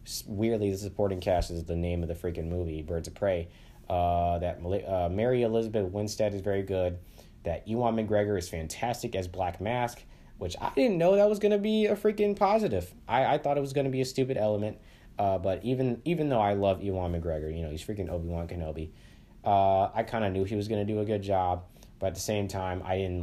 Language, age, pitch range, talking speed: English, 20-39, 85-115 Hz, 230 wpm